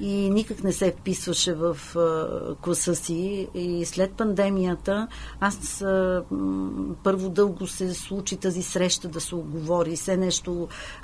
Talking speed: 125 wpm